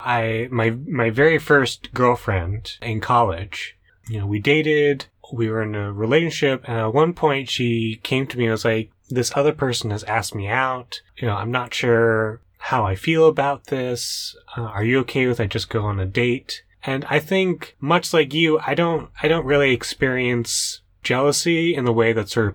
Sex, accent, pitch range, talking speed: male, American, 110-145 Hz, 200 wpm